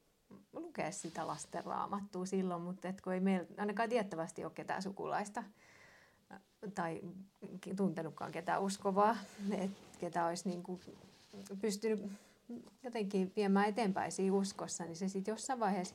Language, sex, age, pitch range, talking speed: Finnish, female, 30-49, 175-205 Hz, 115 wpm